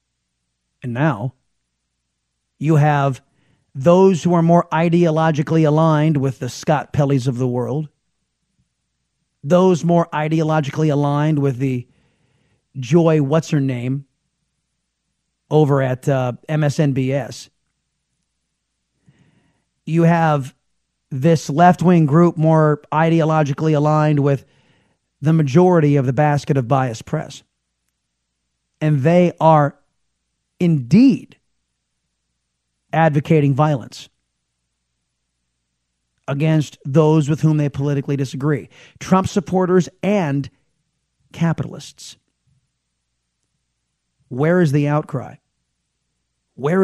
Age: 40-59